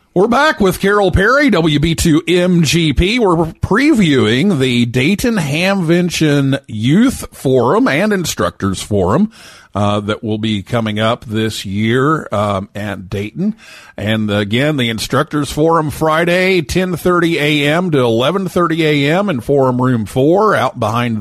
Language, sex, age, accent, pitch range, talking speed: English, male, 50-69, American, 115-170 Hz, 125 wpm